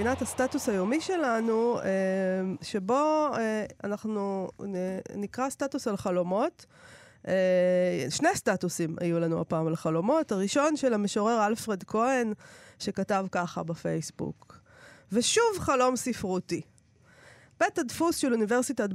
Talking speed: 100 wpm